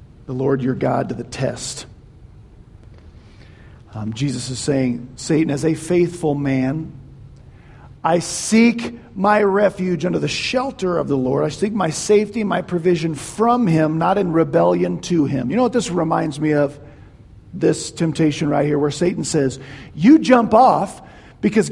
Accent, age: American, 50-69